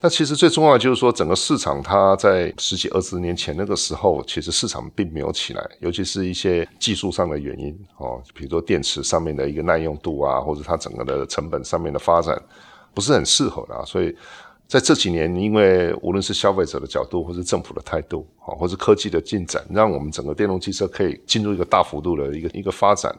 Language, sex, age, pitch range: Chinese, male, 50-69, 85-105 Hz